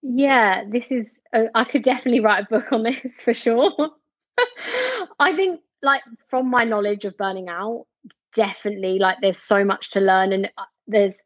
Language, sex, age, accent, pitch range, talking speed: English, female, 20-39, British, 195-240 Hz, 165 wpm